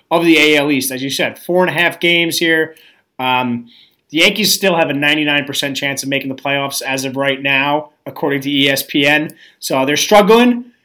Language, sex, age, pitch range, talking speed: English, male, 30-49, 145-180 Hz, 195 wpm